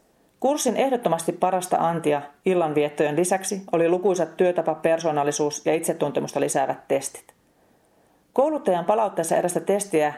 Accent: native